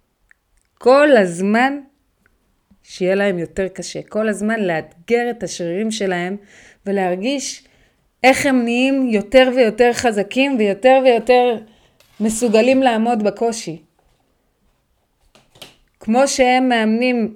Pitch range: 185-260 Hz